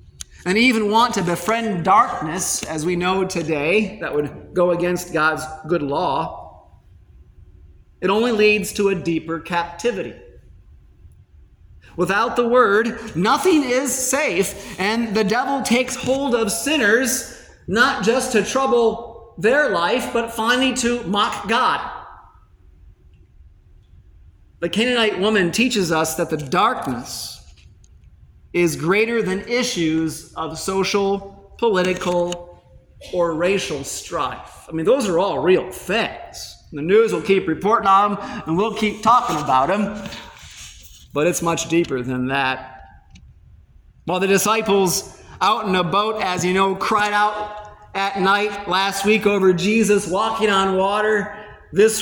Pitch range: 150-215 Hz